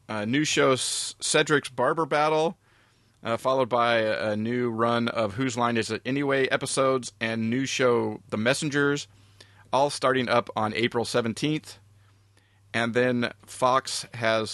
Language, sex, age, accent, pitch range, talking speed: English, male, 30-49, American, 105-130 Hz, 140 wpm